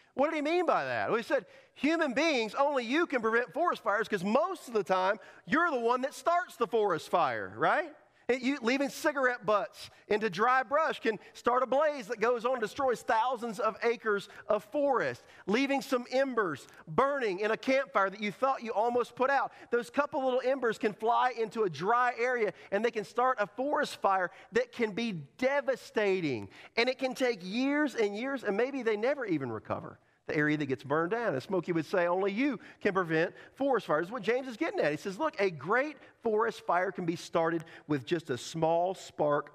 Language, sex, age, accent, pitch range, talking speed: English, male, 40-59, American, 180-255 Hz, 210 wpm